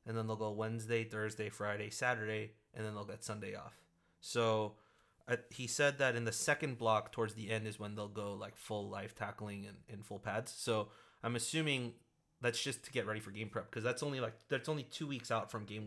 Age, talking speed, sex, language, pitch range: 30-49, 225 wpm, male, English, 105-120 Hz